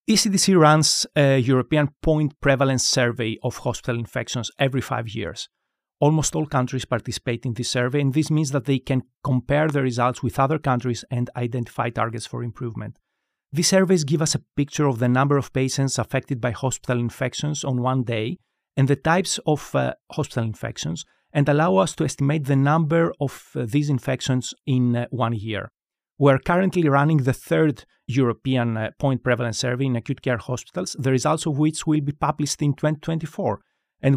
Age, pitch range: 40-59, 125-155 Hz